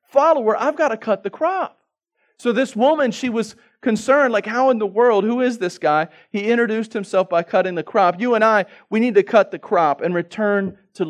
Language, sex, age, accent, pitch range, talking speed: English, male, 40-59, American, 140-185 Hz, 220 wpm